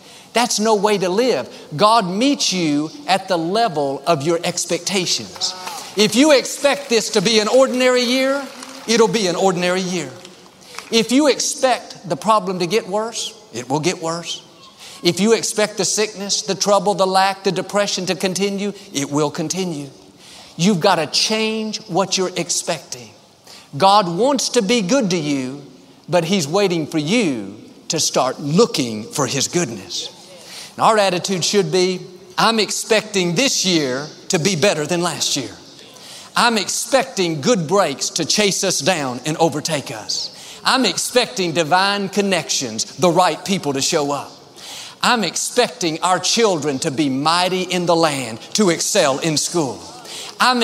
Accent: American